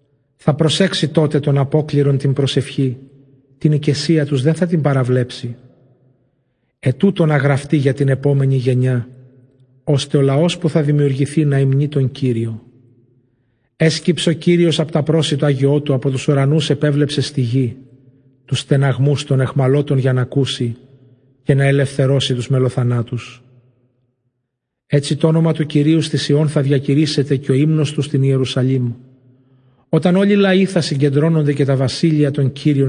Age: 40-59